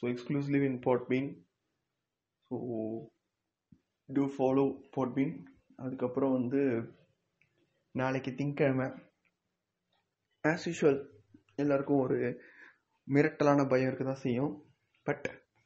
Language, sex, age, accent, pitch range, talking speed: Tamil, male, 20-39, native, 125-140 Hz, 105 wpm